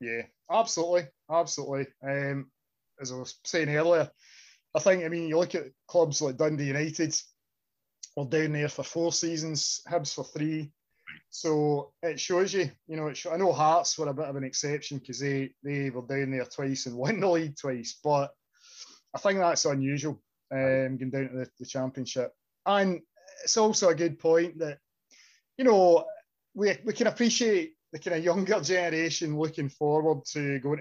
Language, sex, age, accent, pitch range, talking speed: English, male, 20-39, British, 135-175 Hz, 175 wpm